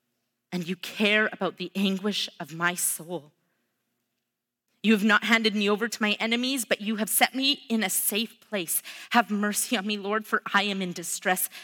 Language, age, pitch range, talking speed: English, 30-49, 150-210 Hz, 190 wpm